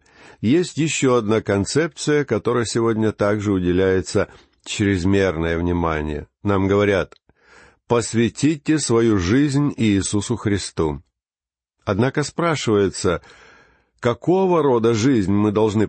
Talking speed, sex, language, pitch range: 90 wpm, male, Russian, 100-130 Hz